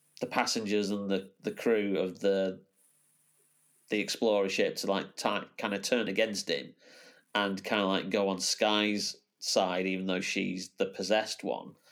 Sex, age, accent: male, 30-49, British